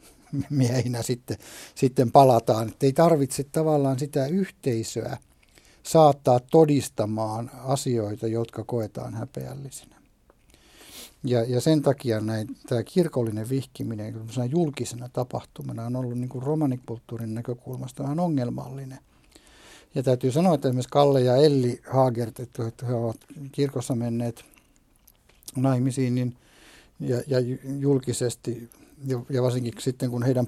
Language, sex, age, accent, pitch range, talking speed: Finnish, male, 60-79, native, 120-140 Hz, 115 wpm